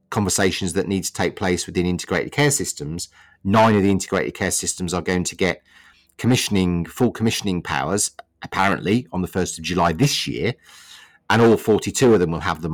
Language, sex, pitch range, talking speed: English, male, 90-105 Hz, 190 wpm